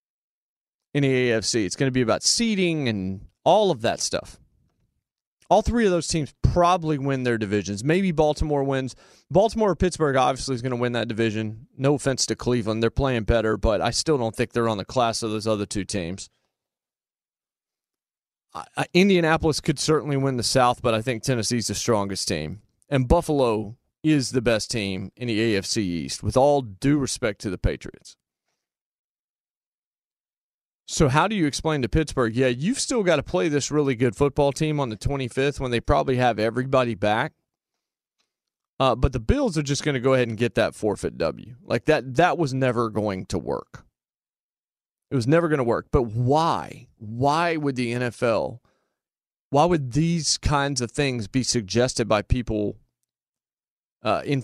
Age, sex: 30-49, male